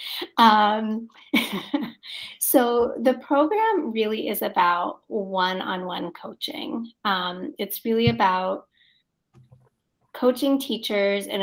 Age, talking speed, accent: 30-49, 85 wpm, American